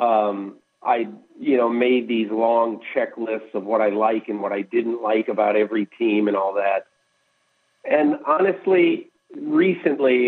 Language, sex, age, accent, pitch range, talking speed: English, male, 50-69, American, 105-130 Hz, 150 wpm